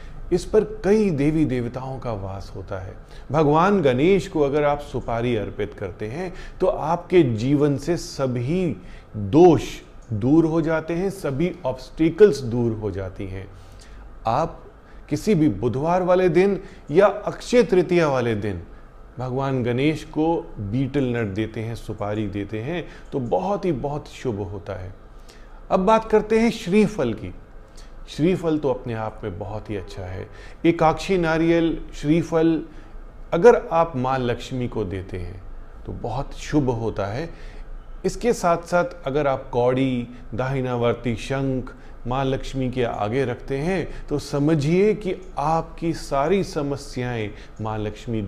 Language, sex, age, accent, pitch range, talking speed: Hindi, male, 30-49, native, 110-170 Hz, 140 wpm